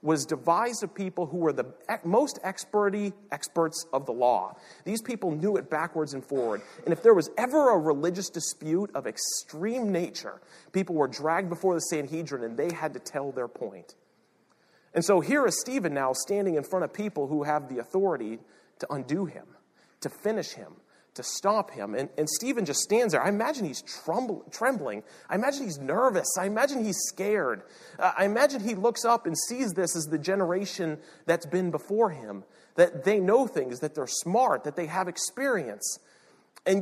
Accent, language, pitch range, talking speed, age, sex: American, English, 155-210 Hz, 185 wpm, 40-59, male